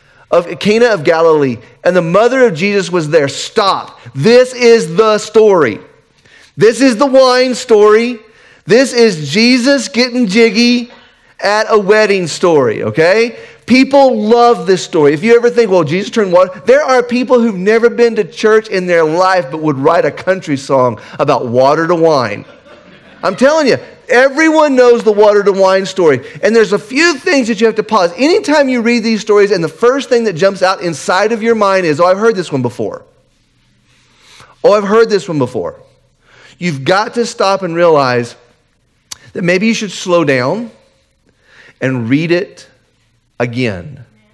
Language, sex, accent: English, male, American